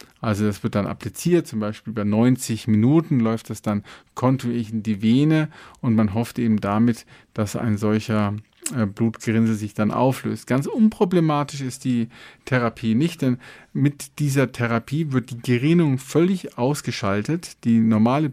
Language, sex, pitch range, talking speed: German, male, 110-135 Hz, 150 wpm